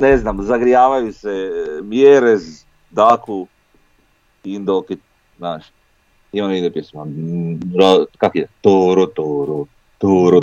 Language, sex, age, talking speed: Croatian, male, 40-59, 90 wpm